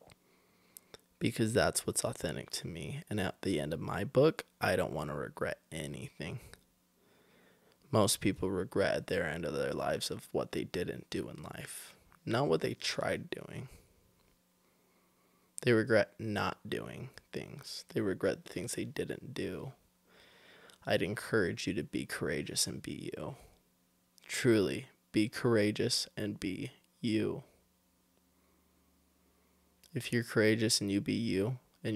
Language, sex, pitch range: English, male, 105-140 Hz